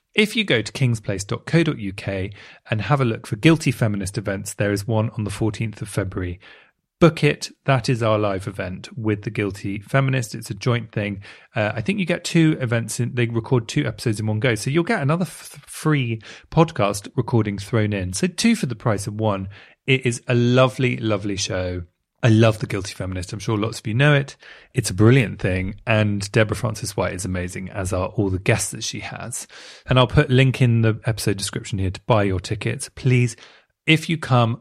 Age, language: 30-49, English